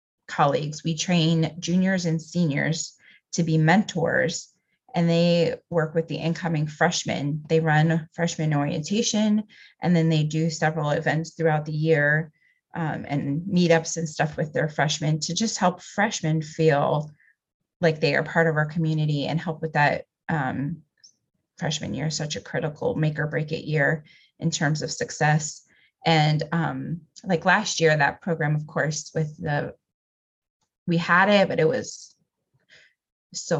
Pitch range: 155-170 Hz